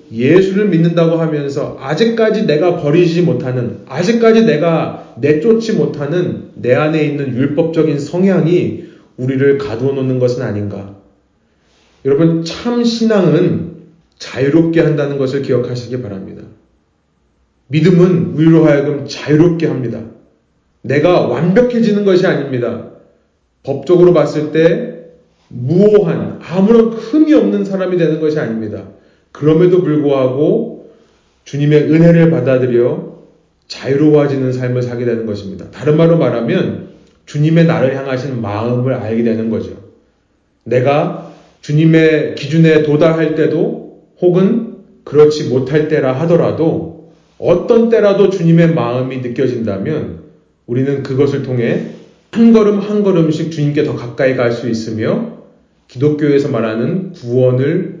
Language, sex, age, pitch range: Korean, male, 30-49, 125-170 Hz